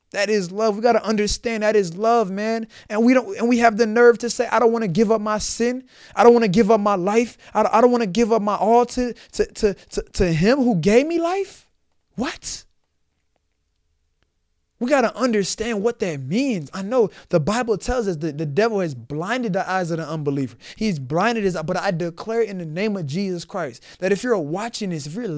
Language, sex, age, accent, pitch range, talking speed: English, male, 20-39, American, 180-230 Hz, 225 wpm